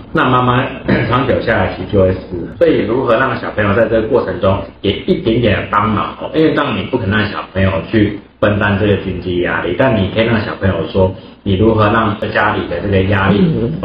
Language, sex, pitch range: Chinese, male, 95-115 Hz